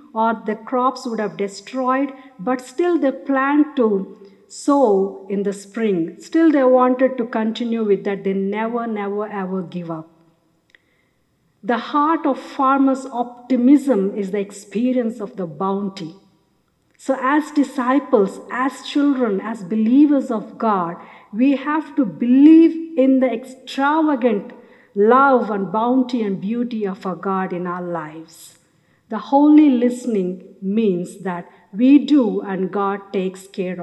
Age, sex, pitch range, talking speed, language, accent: 50-69, female, 200-275 Hz, 135 wpm, English, Indian